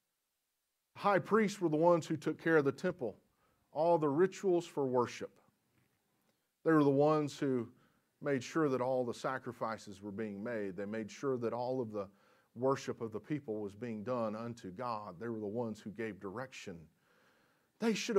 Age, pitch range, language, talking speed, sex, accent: 40-59, 115-155 Hz, English, 180 wpm, male, American